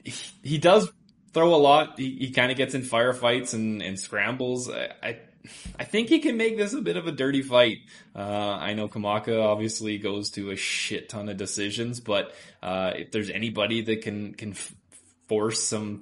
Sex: male